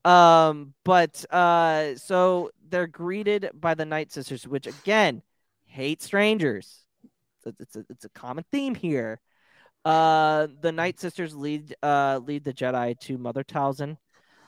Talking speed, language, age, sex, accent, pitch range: 145 wpm, English, 20-39, male, American, 125-165 Hz